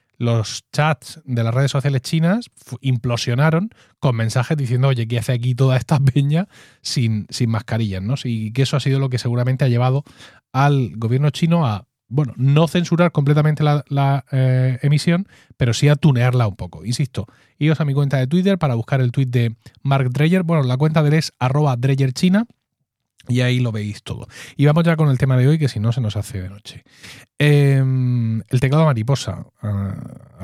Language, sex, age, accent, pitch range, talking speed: Spanish, male, 30-49, Spanish, 115-145 Hz, 195 wpm